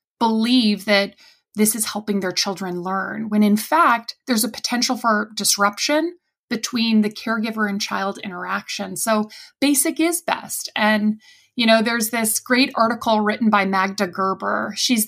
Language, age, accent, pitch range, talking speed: English, 30-49, American, 200-245 Hz, 150 wpm